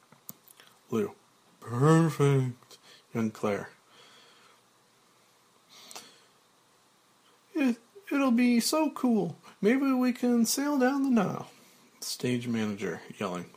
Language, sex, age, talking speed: English, male, 40-59, 85 wpm